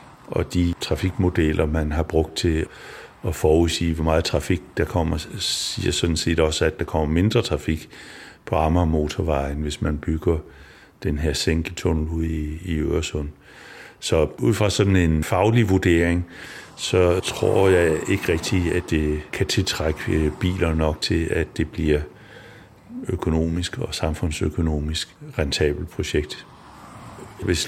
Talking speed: 140 wpm